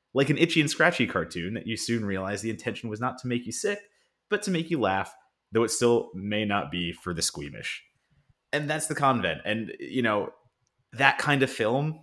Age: 30-49